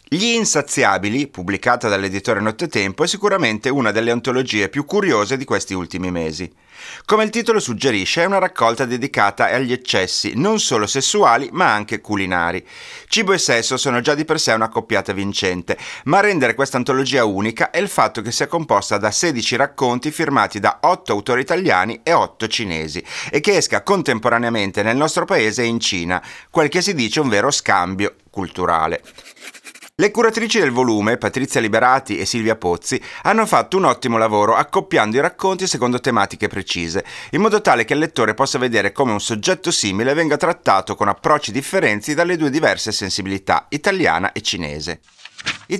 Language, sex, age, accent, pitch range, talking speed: Italian, male, 30-49, native, 105-150 Hz, 170 wpm